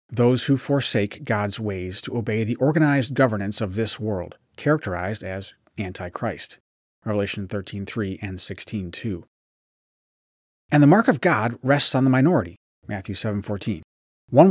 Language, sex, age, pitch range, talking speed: English, male, 30-49, 100-140 Hz, 145 wpm